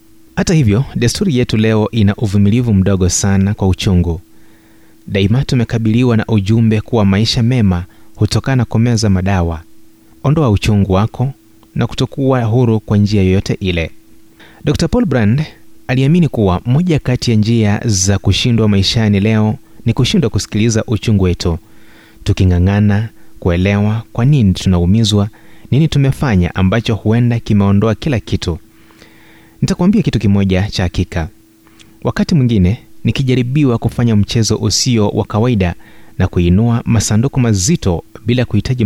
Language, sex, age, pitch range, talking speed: Swahili, male, 30-49, 100-120 Hz, 120 wpm